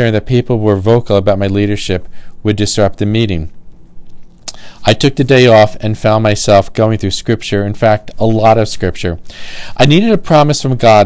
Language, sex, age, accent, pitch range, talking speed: English, male, 40-59, American, 100-125 Hz, 185 wpm